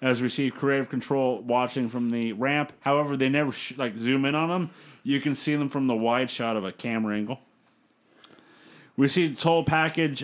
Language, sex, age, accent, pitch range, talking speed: English, male, 30-49, American, 130-155 Hz, 200 wpm